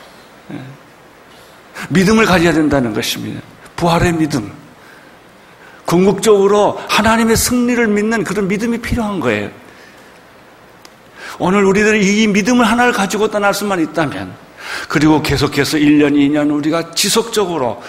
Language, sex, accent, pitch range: Korean, male, native, 150-205 Hz